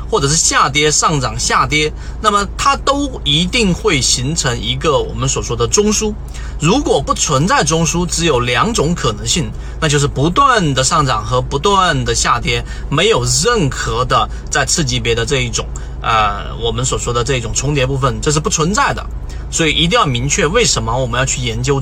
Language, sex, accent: Chinese, male, native